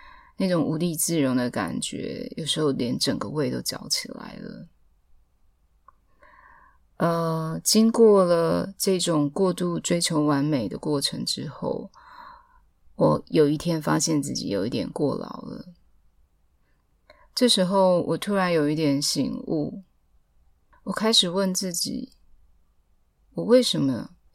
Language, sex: Chinese, female